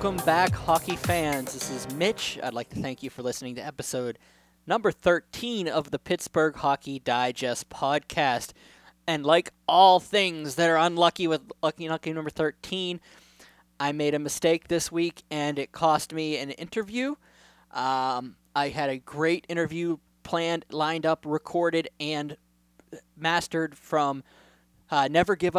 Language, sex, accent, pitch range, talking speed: English, male, American, 135-165 Hz, 150 wpm